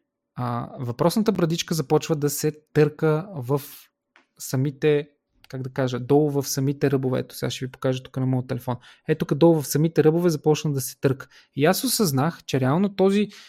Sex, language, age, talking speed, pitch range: male, Bulgarian, 20-39, 180 wpm, 135-180 Hz